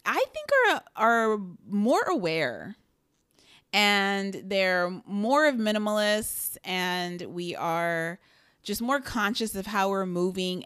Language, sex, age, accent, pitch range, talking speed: English, female, 30-49, American, 175-220 Hz, 120 wpm